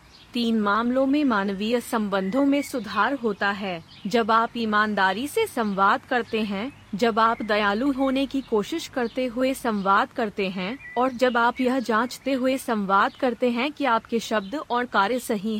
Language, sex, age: Hindi, female, 30-49